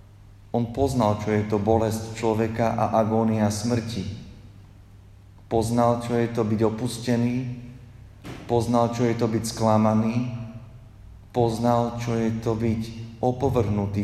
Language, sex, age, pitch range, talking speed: Slovak, male, 40-59, 105-120 Hz, 120 wpm